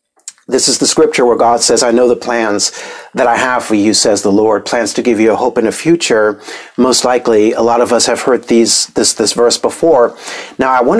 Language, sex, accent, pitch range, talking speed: English, male, American, 110-120 Hz, 240 wpm